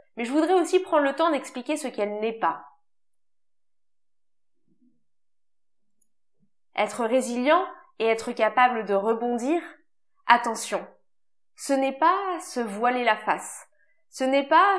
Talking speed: 120 wpm